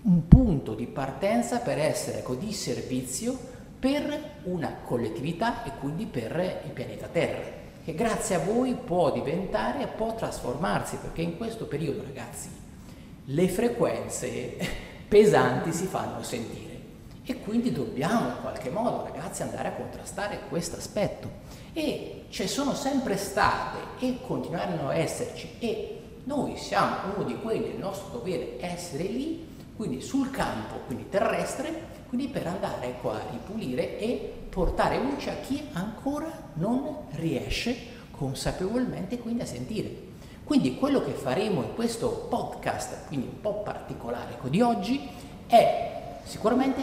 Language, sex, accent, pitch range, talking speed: Italian, male, native, 180-255 Hz, 140 wpm